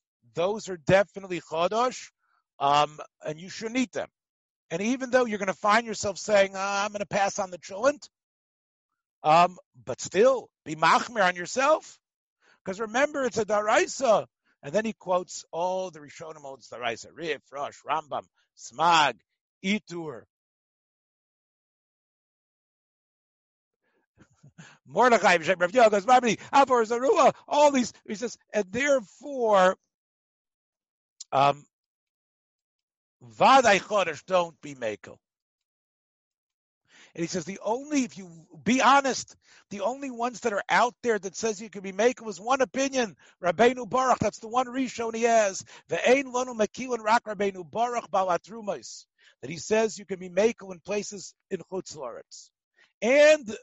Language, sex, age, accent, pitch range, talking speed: English, male, 50-69, American, 180-245 Hz, 120 wpm